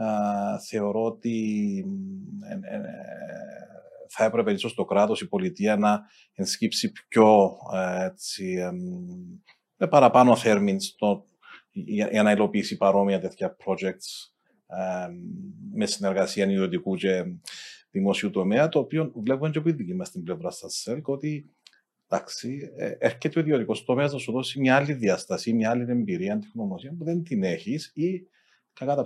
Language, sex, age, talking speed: Greek, male, 40-59, 140 wpm